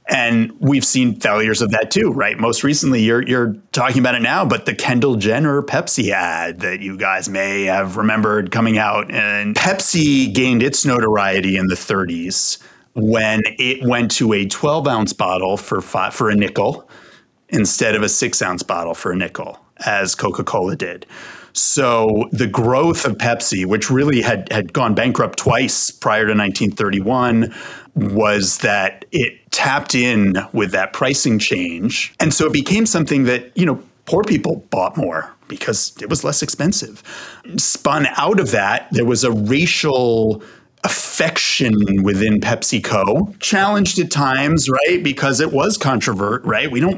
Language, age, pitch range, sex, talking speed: English, 30-49, 105-140 Hz, male, 160 wpm